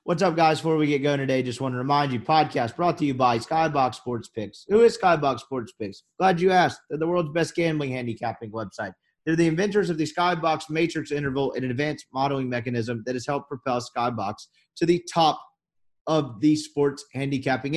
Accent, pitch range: American, 140-180 Hz